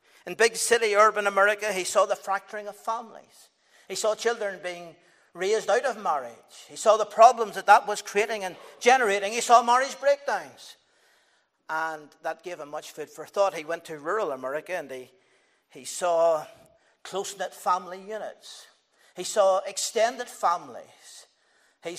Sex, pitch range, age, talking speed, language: male, 180-230 Hz, 50-69, 160 wpm, English